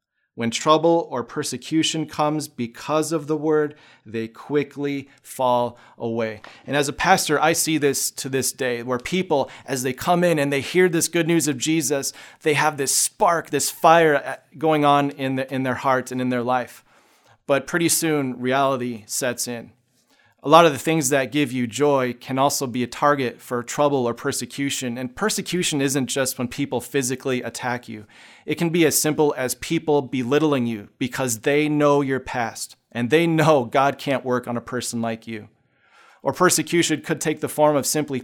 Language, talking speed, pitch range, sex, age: English, 190 wpm, 125-155 Hz, male, 30-49